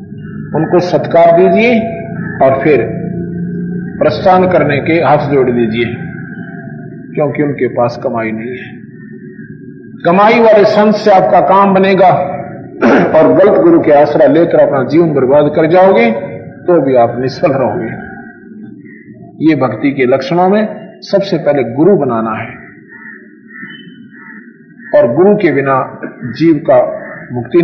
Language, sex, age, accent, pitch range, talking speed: Hindi, male, 50-69, native, 145-200 Hz, 125 wpm